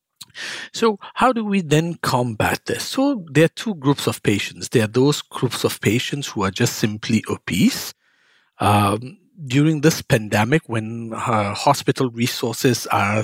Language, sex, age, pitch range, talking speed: English, male, 50-69, 110-145 Hz, 155 wpm